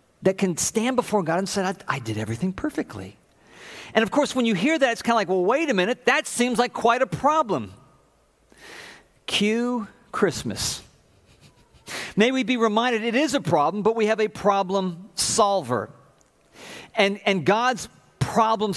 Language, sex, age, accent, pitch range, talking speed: English, male, 50-69, American, 170-230 Hz, 170 wpm